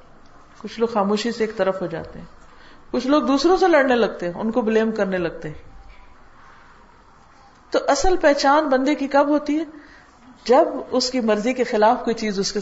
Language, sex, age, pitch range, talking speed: Urdu, female, 50-69, 200-285 Hz, 190 wpm